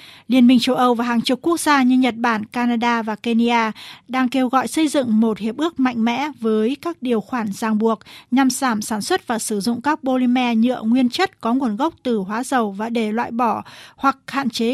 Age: 20-39